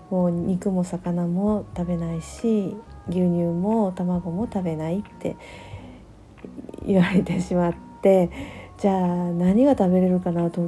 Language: Japanese